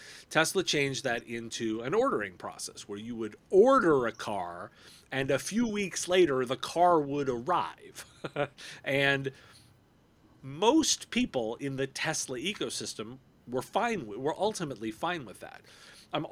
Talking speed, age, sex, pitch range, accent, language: 135 wpm, 40-59, male, 120-155 Hz, American, English